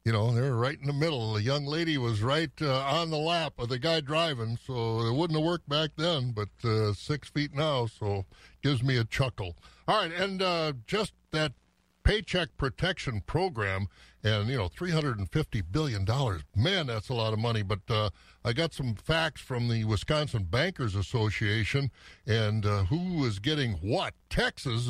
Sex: male